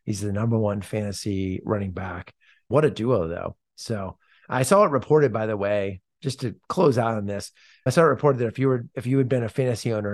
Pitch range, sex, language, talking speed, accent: 100-130 Hz, male, English, 225 wpm, American